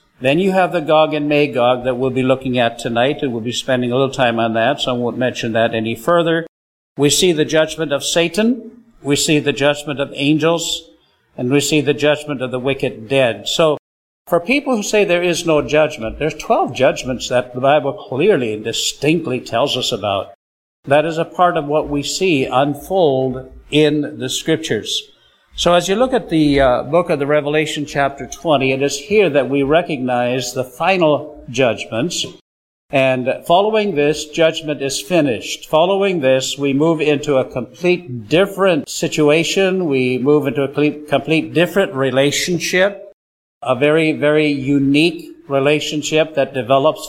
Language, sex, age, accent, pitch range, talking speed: English, male, 60-79, American, 130-165 Hz, 170 wpm